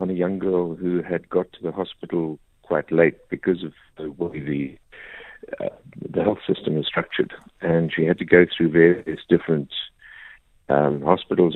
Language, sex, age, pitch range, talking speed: English, male, 60-79, 80-90 Hz, 170 wpm